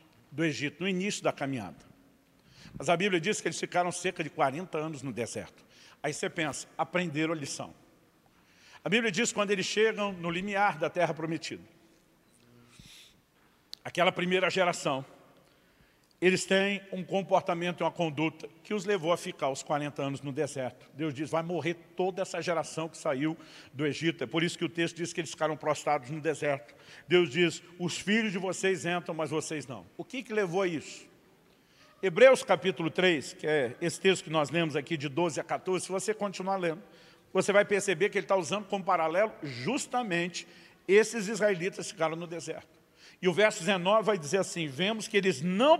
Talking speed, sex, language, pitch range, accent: 185 wpm, male, Portuguese, 160-195 Hz, Brazilian